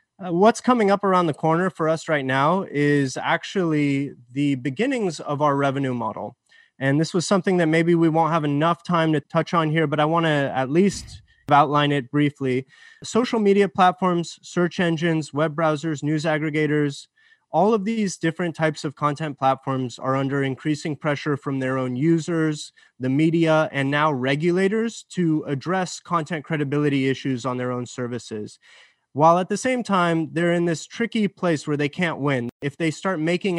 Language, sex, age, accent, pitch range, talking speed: English, male, 20-39, American, 140-175 Hz, 180 wpm